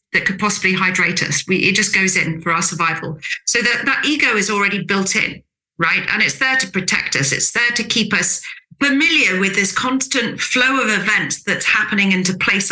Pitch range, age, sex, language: 180-230 Hz, 40-59, female, English